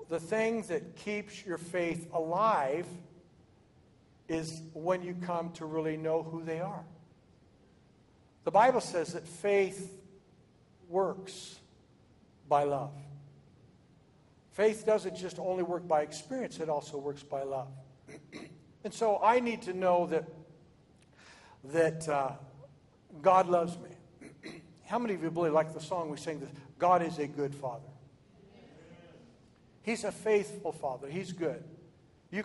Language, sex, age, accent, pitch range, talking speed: English, male, 60-79, American, 140-180 Hz, 130 wpm